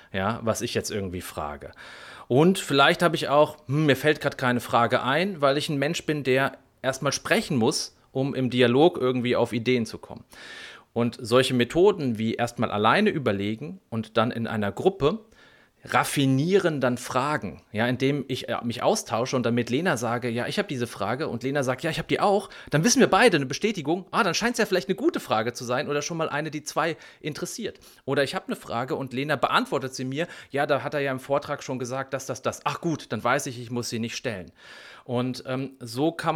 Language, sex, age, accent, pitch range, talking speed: German, male, 30-49, German, 120-155 Hz, 220 wpm